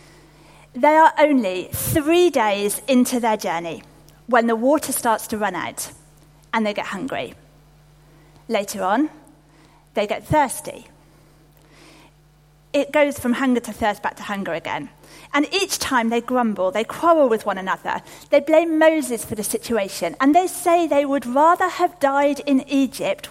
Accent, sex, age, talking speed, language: British, female, 40-59, 155 wpm, English